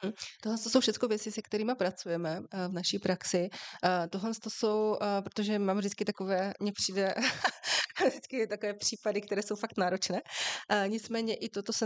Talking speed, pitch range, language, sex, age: 155 wpm, 180-205 Hz, Slovak, female, 30-49